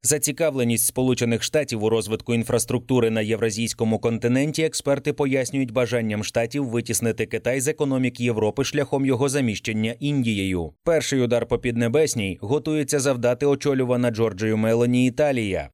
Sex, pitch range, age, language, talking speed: male, 115-140 Hz, 20-39, Ukrainian, 120 wpm